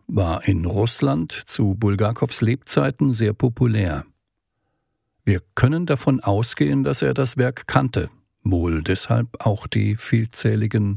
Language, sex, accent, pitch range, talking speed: German, male, German, 100-130 Hz, 120 wpm